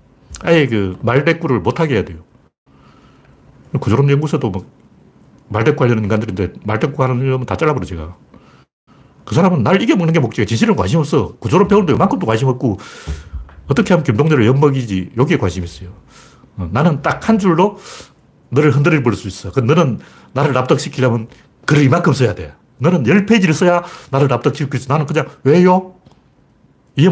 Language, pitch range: Korean, 100-165 Hz